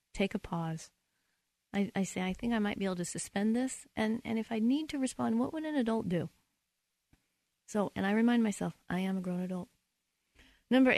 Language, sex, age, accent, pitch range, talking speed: English, female, 40-59, American, 185-235 Hz, 210 wpm